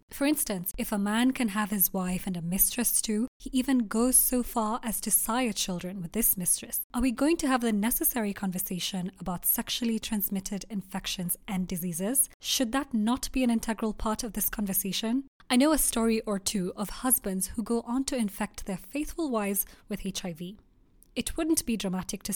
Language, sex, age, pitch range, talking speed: English, female, 20-39, 195-245 Hz, 195 wpm